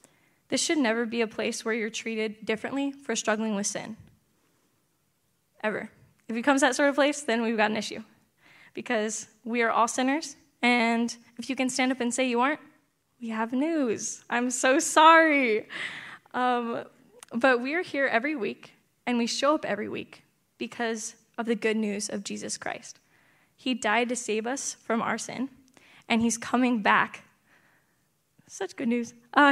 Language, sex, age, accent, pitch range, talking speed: English, female, 10-29, American, 220-260 Hz, 175 wpm